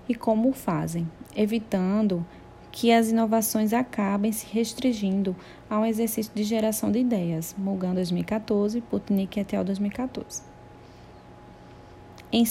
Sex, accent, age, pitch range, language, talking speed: female, Brazilian, 20-39, 190-230 Hz, Portuguese, 120 wpm